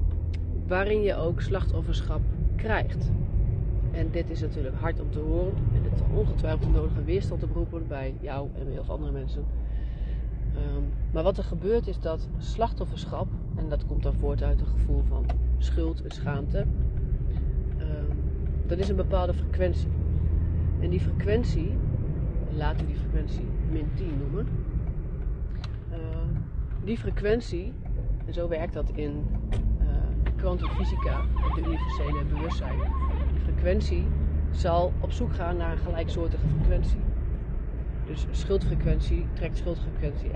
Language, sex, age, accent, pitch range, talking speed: Dutch, female, 40-59, Dutch, 65-90 Hz, 135 wpm